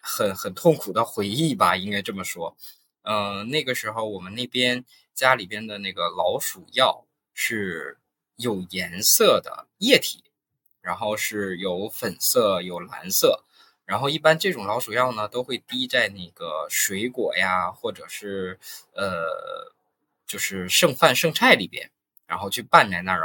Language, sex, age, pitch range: Chinese, male, 20-39, 100-140 Hz